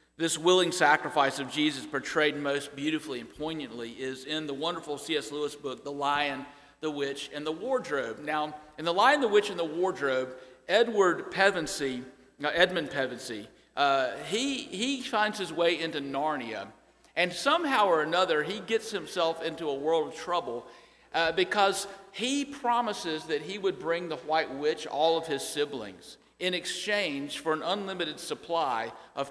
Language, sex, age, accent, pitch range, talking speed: English, male, 50-69, American, 145-220 Hz, 160 wpm